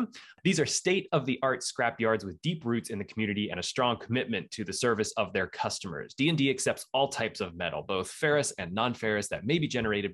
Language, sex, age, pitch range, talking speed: English, male, 20-39, 105-145 Hz, 200 wpm